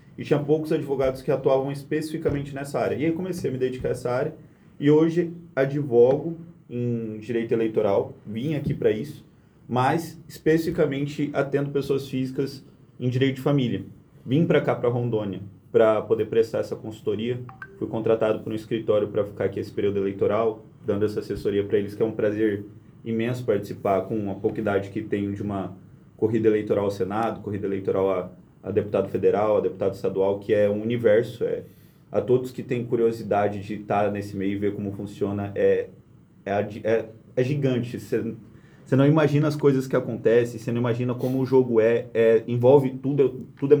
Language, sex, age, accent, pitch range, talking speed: Portuguese, male, 20-39, Brazilian, 110-150 Hz, 180 wpm